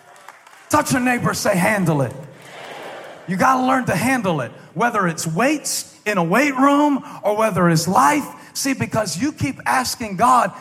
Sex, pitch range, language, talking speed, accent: male, 130-210 Hz, English, 165 wpm, American